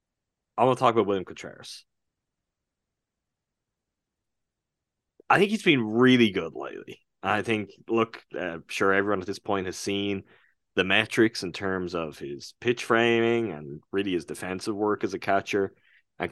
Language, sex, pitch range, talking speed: English, male, 95-115 Hz, 160 wpm